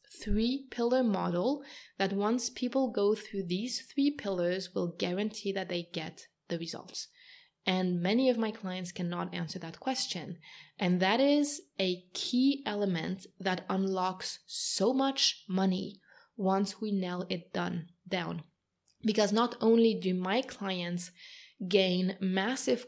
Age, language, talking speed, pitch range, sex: 20-39, English, 135 wpm, 185-235 Hz, female